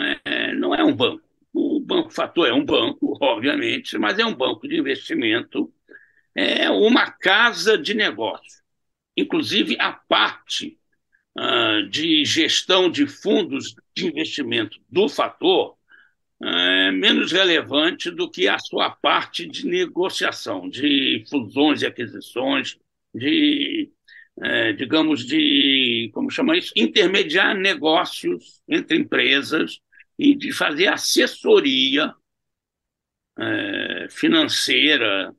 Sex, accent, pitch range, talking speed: male, Brazilian, 290-335 Hz, 105 wpm